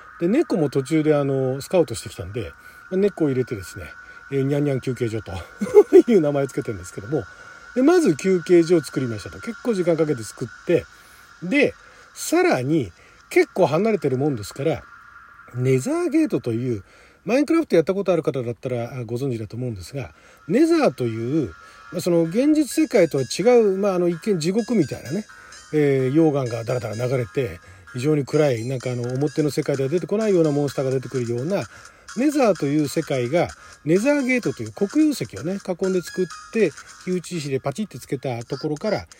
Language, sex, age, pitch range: Japanese, male, 40-59, 130-205 Hz